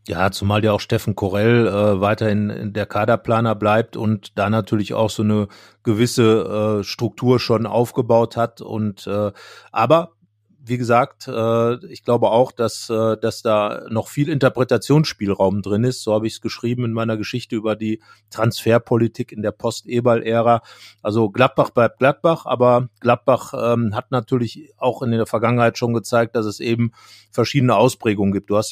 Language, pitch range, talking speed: German, 110-125 Hz, 165 wpm